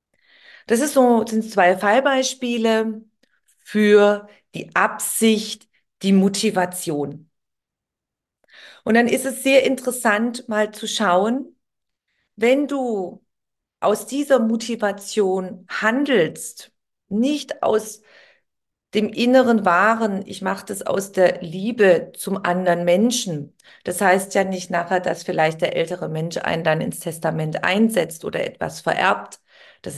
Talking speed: 120 wpm